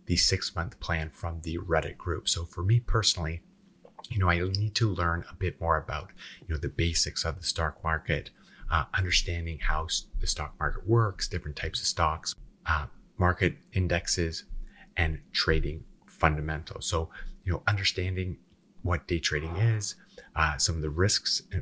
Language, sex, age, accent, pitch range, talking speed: English, male, 30-49, American, 80-95 Hz, 165 wpm